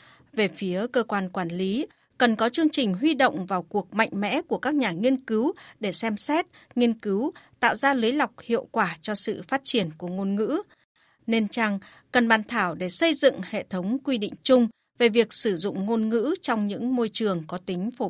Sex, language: female, Vietnamese